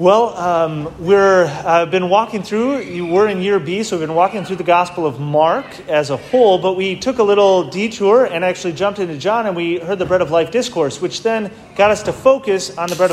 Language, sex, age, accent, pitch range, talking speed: English, male, 30-49, American, 150-195 Hz, 230 wpm